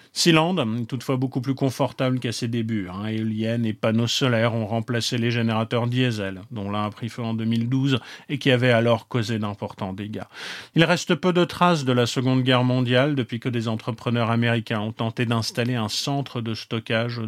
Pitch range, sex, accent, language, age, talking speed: 110-130 Hz, male, French, French, 40-59, 190 wpm